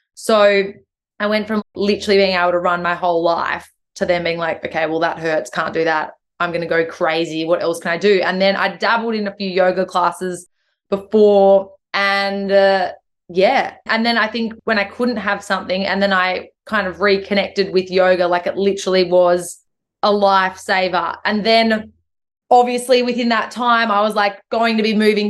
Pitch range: 180-205 Hz